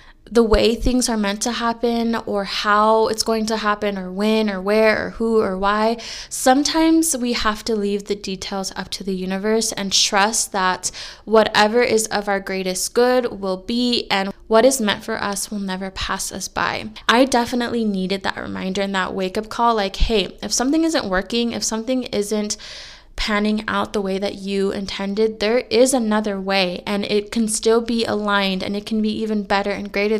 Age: 20-39